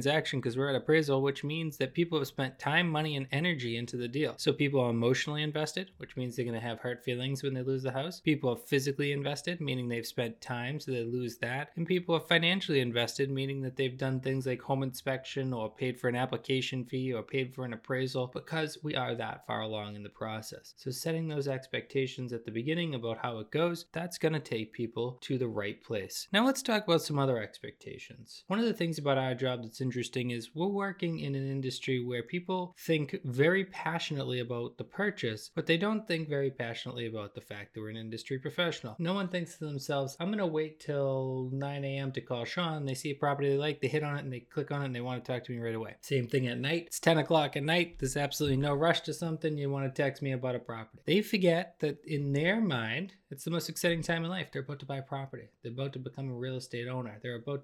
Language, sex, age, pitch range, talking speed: English, male, 20-39, 125-155 Hz, 245 wpm